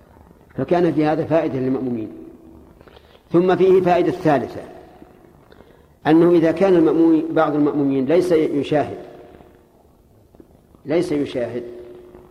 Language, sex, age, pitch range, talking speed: Arabic, male, 50-69, 135-175 Hz, 90 wpm